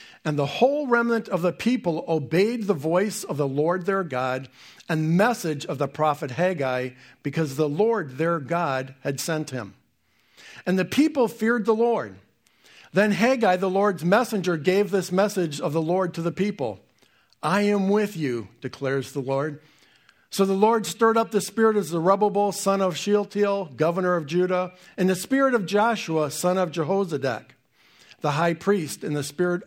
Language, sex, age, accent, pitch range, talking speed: English, male, 50-69, American, 145-200 Hz, 170 wpm